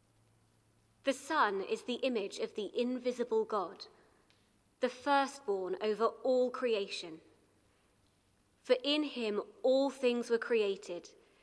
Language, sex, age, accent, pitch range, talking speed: English, female, 20-39, British, 210-260 Hz, 110 wpm